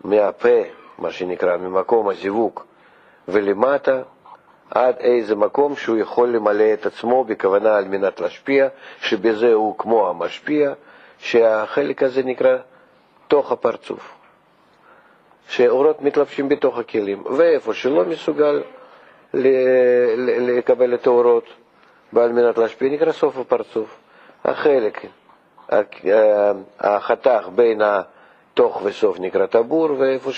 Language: Hebrew